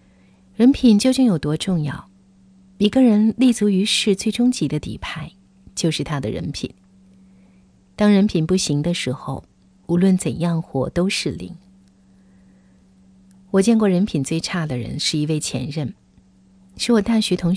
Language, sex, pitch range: Chinese, female, 140-190 Hz